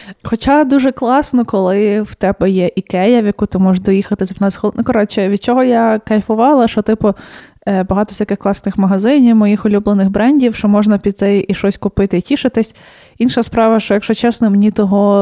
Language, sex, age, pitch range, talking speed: Ukrainian, female, 20-39, 200-230 Hz, 165 wpm